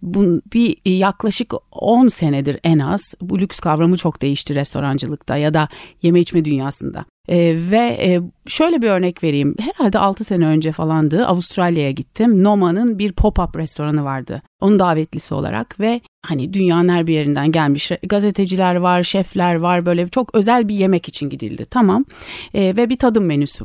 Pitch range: 155-210 Hz